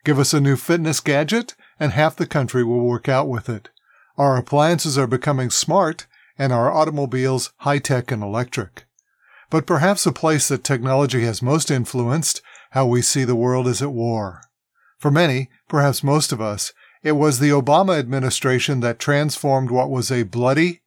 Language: English